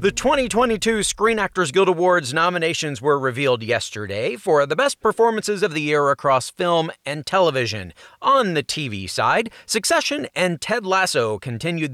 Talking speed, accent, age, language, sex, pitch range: 150 wpm, American, 30-49, English, male, 140-195 Hz